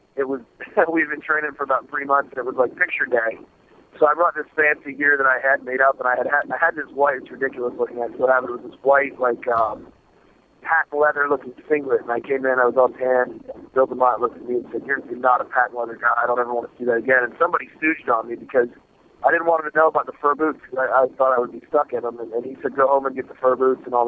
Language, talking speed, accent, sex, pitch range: English, 295 wpm, American, male, 130-150 Hz